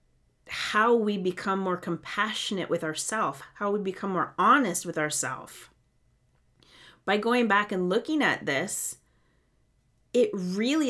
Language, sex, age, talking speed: English, female, 30-49, 125 wpm